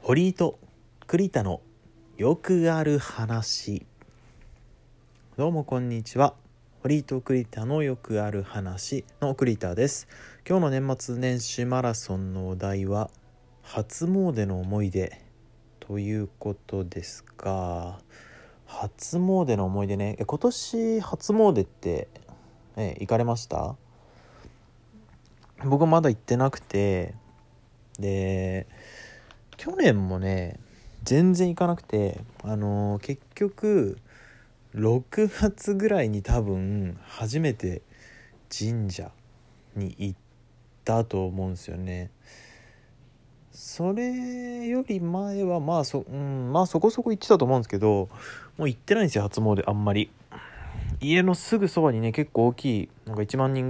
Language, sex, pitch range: Japanese, male, 105-140 Hz